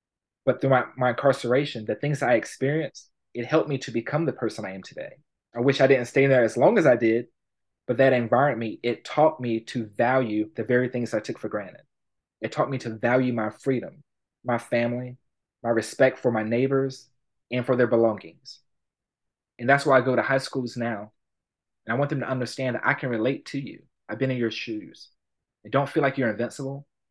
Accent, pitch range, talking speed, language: American, 115-130 Hz, 210 wpm, English